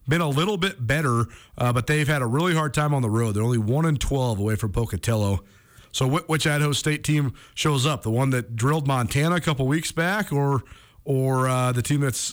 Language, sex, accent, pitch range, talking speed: English, male, American, 115-145 Hz, 215 wpm